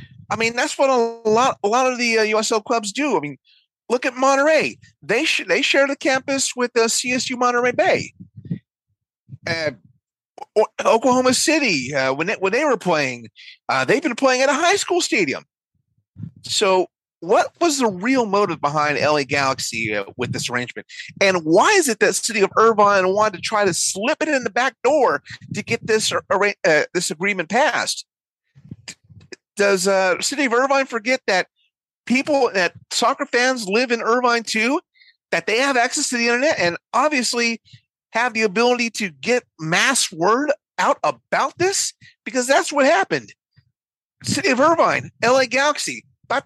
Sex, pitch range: male, 180-270 Hz